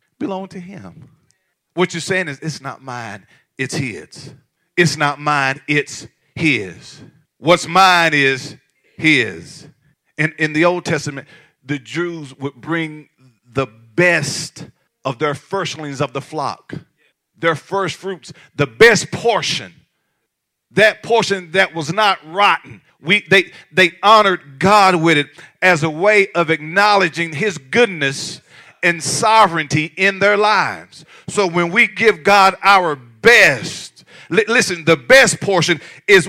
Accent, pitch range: American, 155-205 Hz